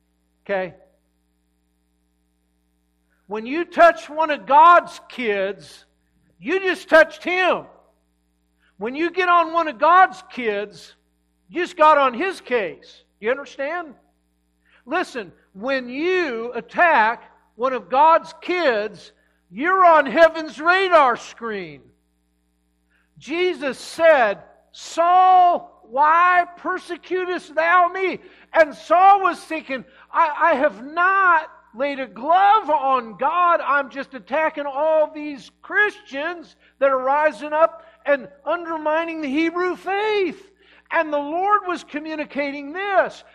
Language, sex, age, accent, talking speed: English, male, 60-79, American, 110 wpm